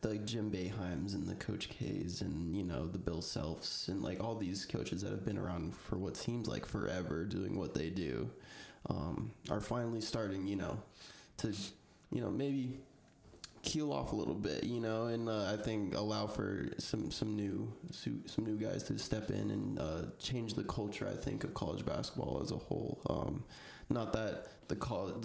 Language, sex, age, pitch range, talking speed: English, male, 20-39, 100-115 Hz, 190 wpm